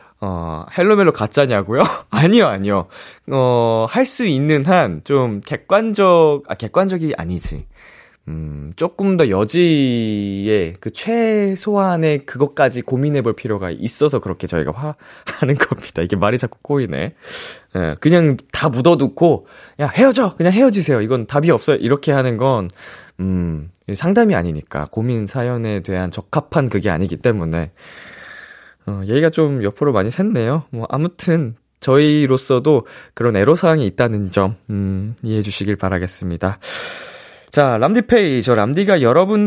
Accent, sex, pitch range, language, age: native, male, 100-160 Hz, Korean, 20-39